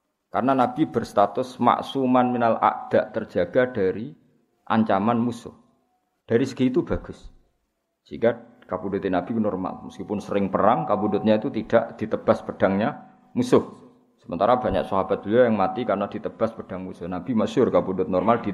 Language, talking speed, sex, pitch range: Malay, 135 wpm, male, 105-140 Hz